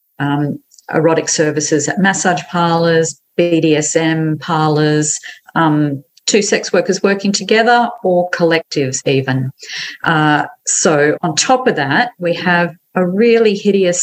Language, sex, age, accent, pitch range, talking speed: English, female, 40-59, Australian, 150-175 Hz, 120 wpm